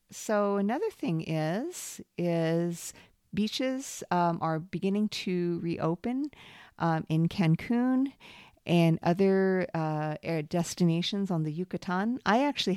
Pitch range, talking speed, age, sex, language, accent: 155-185 Hz, 110 wpm, 50-69, female, English, American